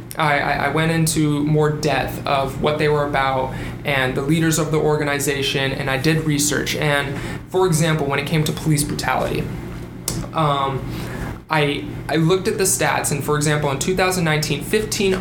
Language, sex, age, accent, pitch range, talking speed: English, male, 20-39, American, 140-160 Hz, 170 wpm